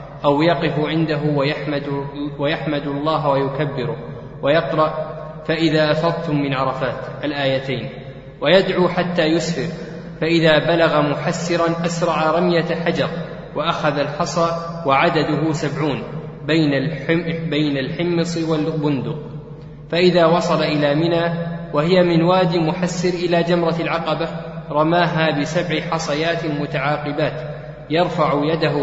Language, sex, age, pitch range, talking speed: Arabic, male, 20-39, 150-170 Hz, 95 wpm